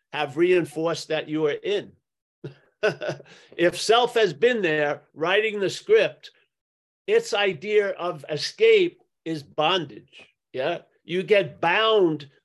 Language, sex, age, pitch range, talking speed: English, male, 50-69, 175-250 Hz, 115 wpm